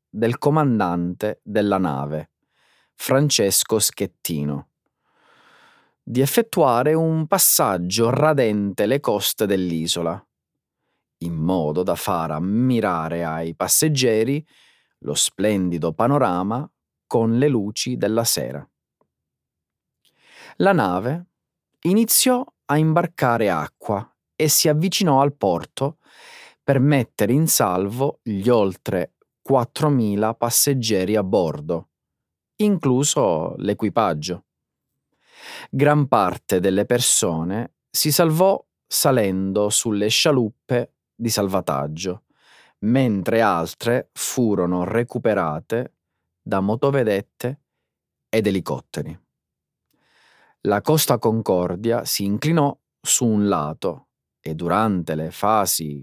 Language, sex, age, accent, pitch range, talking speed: Italian, male, 30-49, native, 95-145 Hz, 90 wpm